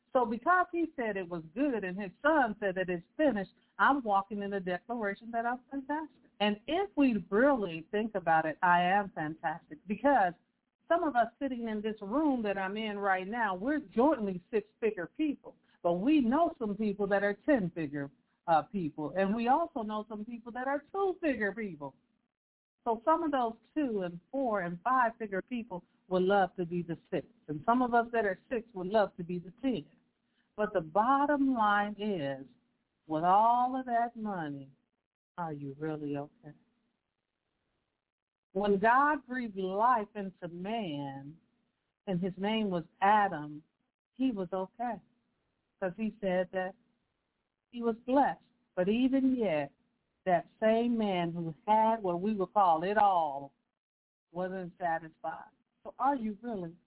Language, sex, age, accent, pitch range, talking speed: English, female, 50-69, American, 185-245 Hz, 160 wpm